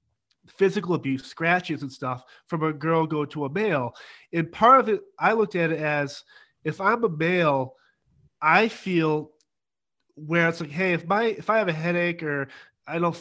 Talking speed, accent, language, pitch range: 185 wpm, American, English, 155-195 Hz